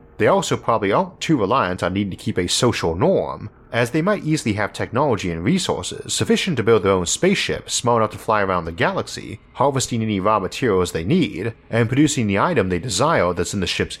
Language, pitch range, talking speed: English, 95-125 Hz, 215 wpm